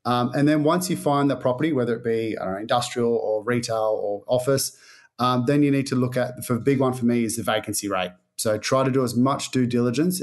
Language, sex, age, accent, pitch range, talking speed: English, male, 30-49, Australian, 120-140 Hz, 235 wpm